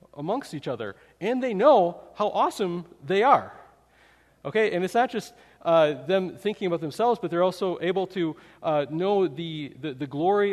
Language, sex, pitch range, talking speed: English, male, 155-200 Hz, 175 wpm